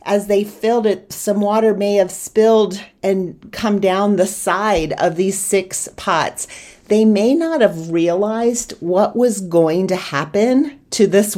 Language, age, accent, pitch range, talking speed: English, 40-59, American, 170-205 Hz, 160 wpm